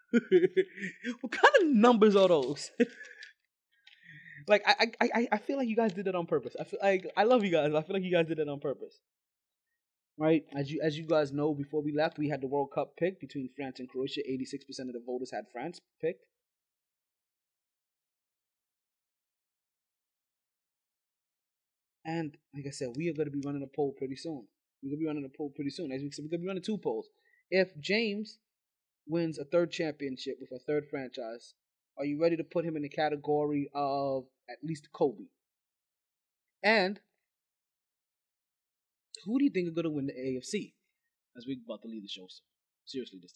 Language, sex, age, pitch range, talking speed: English, male, 20-39, 140-220 Hz, 195 wpm